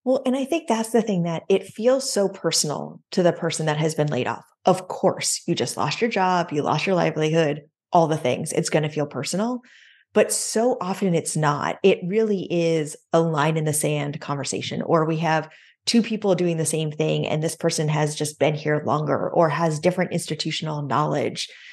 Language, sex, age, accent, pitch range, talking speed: English, female, 30-49, American, 160-195 Hz, 205 wpm